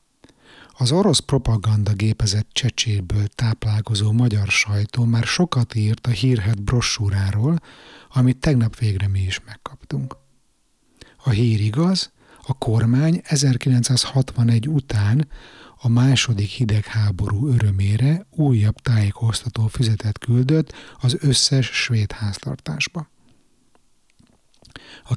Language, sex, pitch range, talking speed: Hungarian, male, 105-130 Hz, 95 wpm